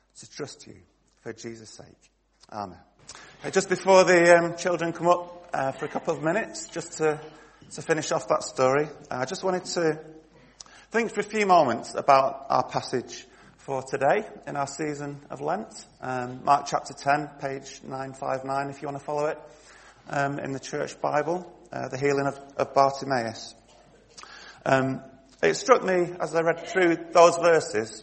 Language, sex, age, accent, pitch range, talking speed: English, male, 30-49, British, 125-165 Hz, 170 wpm